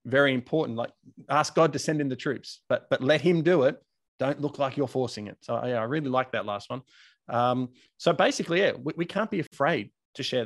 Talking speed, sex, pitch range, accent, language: 235 wpm, male, 130-160 Hz, Australian, English